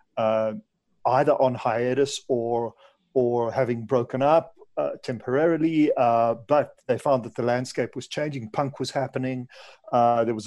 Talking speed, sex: 150 wpm, male